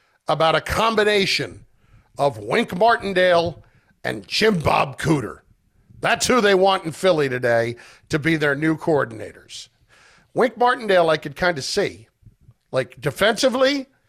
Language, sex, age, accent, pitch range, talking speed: English, male, 50-69, American, 150-200 Hz, 130 wpm